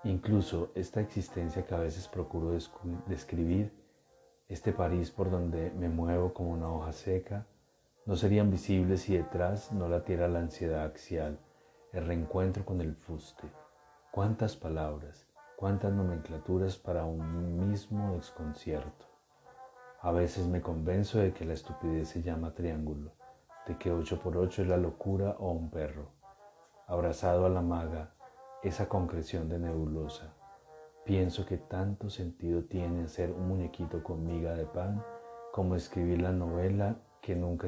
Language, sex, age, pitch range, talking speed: Spanish, male, 40-59, 85-95 Hz, 145 wpm